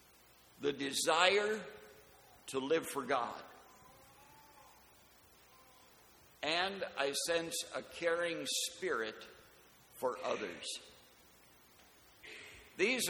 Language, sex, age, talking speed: English, male, 60-79, 70 wpm